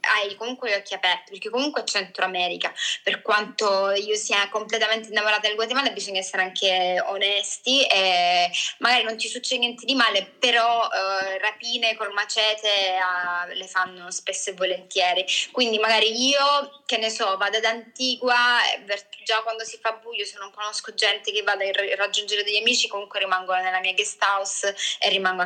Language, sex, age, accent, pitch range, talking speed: Italian, female, 20-39, native, 195-230 Hz, 170 wpm